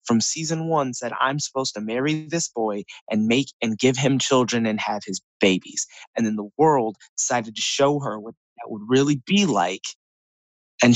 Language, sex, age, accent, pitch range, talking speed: English, male, 20-39, American, 115-140 Hz, 190 wpm